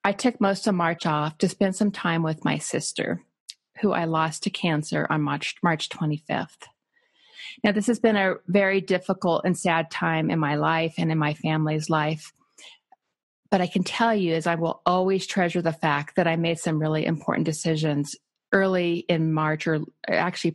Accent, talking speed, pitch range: American, 185 wpm, 160-195 Hz